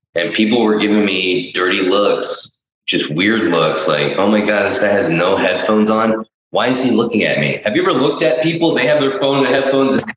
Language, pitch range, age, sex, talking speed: English, 115-165 Hz, 20-39, male, 235 wpm